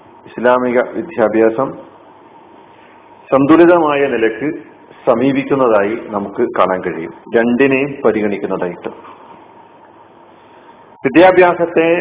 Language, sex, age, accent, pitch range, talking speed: Malayalam, male, 40-59, native, 125-150 Hz, 55 wpm